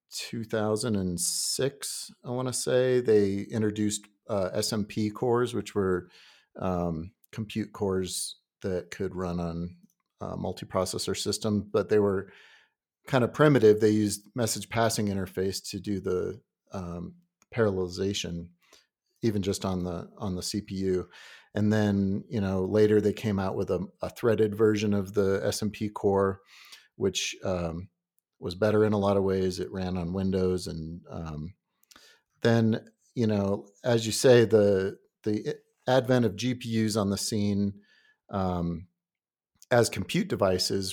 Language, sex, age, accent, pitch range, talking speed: English, male, 40-59, American, 95-110 Hz, 140 wpm